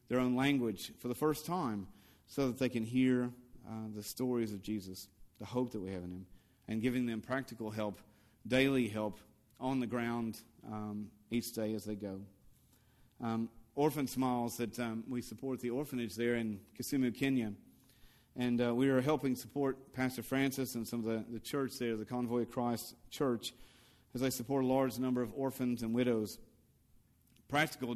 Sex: male